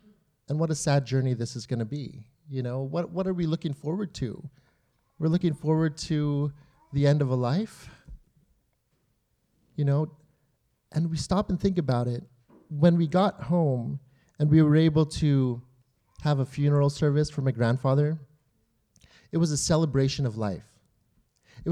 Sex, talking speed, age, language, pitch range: male, 165 wpm, 30-49, English, 135-170 Hz